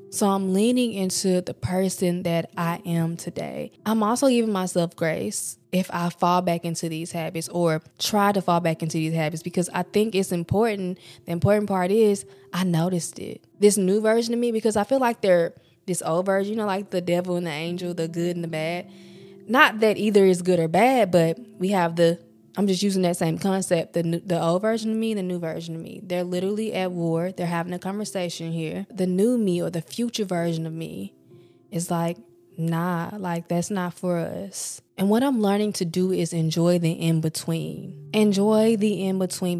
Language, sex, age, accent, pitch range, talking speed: English, female, 20-39, American, 170-195 Hz, 205 wpm